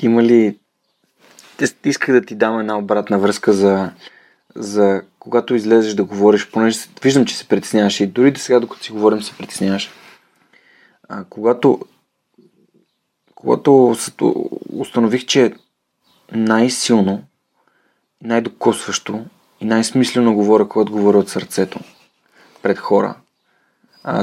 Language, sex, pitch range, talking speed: Bulgarian, male, 100-120 Hz, 110 wpm